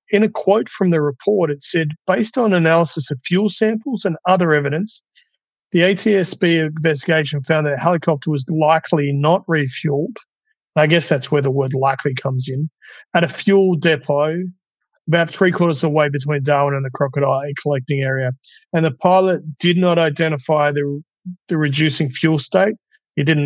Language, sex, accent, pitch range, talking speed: English, male, Australian, 145-175 Hz, 165 wpm